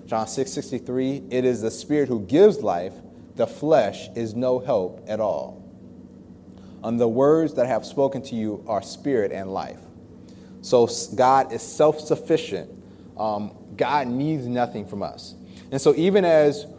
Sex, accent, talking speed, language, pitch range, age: male, American, 155 wpm, English, 110-140 Hz, 30-49